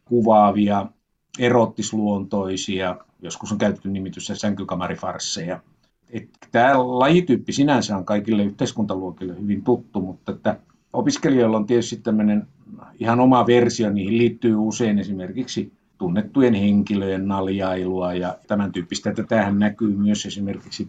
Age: 50-69